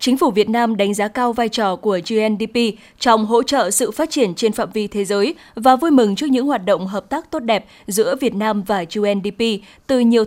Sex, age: female, 20-39